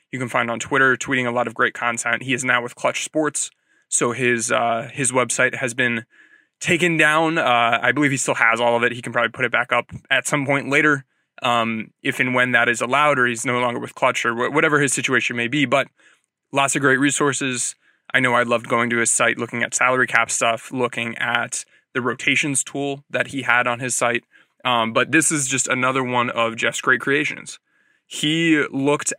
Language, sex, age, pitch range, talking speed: English, male, 20-39, 120-140 Hz, 220 wpm